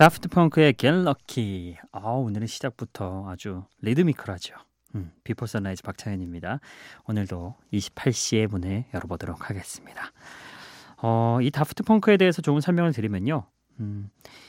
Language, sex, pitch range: Korean, male, 105-155 Hz